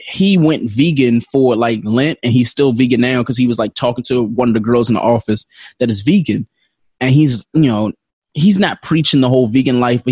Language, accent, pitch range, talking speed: English, American, 120-165 Hz, 230 wpm